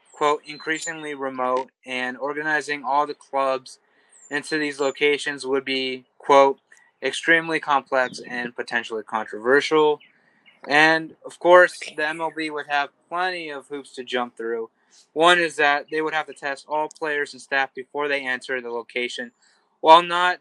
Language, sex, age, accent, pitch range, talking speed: English, male, 20-39, American, 125-155 Hz, 150 wpm